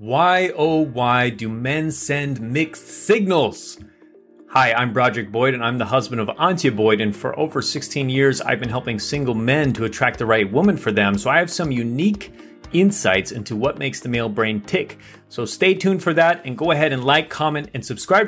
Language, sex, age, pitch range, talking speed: English, male, 30-49, 115-165 Hz, 205 wpm